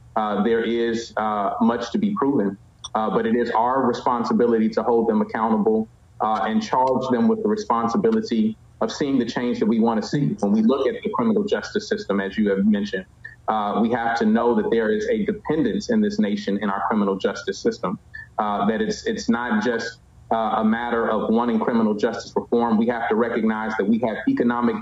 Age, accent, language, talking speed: 30-49, American, English, 210 wpm